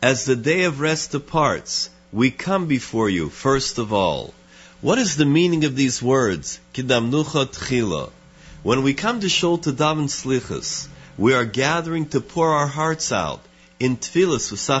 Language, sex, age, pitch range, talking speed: English, male, 50-69, 115-155 Hz, 140 wpm